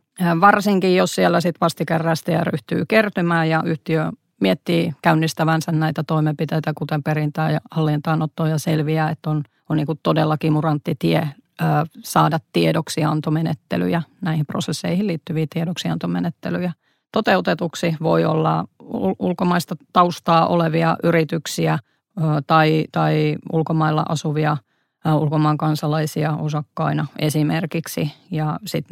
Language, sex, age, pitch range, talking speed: Finnish, female, 30-49, 155-175 Hz, 100 wpm